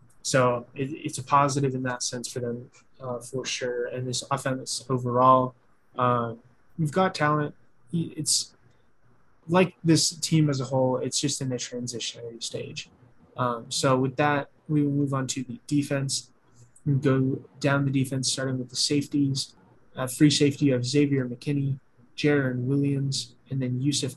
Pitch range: 125-140 Hz